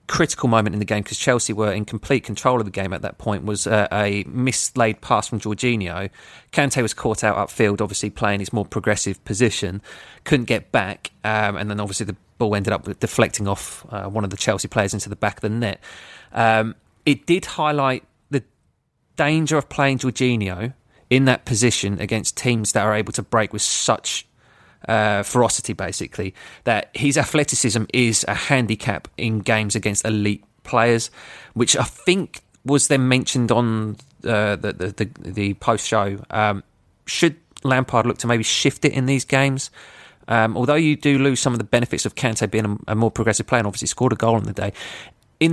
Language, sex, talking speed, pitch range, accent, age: English, male, 190 wpm, 105-130 Hz, British, 30-49